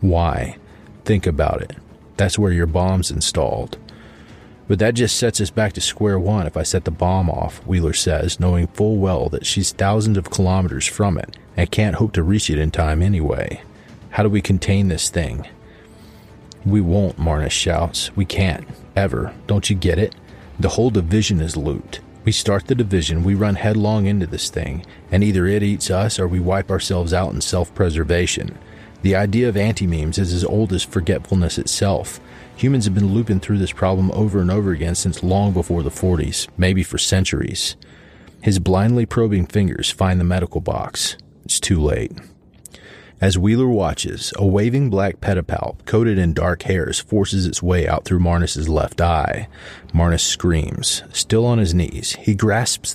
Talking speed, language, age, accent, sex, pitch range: 175 wpm, English, 30-49, American, male, 85-105 Hz